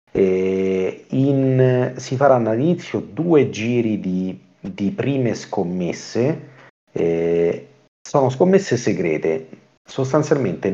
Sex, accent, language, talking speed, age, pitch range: male, native, Italian, 90 wpm, 40-59, 90-130 Hz